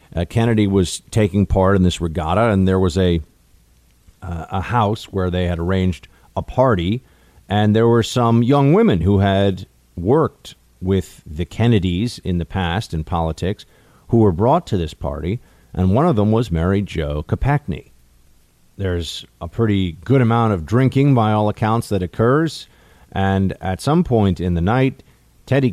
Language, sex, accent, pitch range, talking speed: English, male, American, 90-110 Hz, 170 wpm